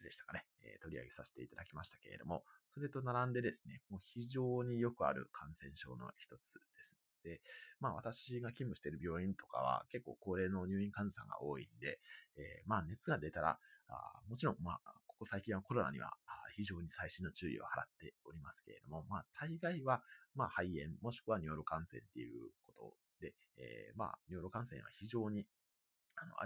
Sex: male